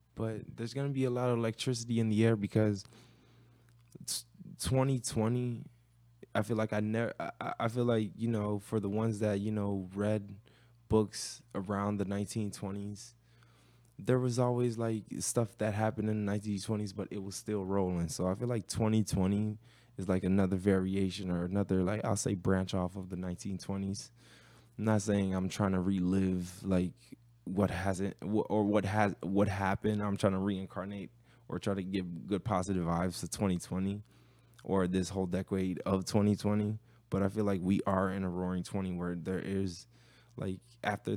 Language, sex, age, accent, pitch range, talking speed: English, male, 20-39, American, 95-115 Hz, 170 wpm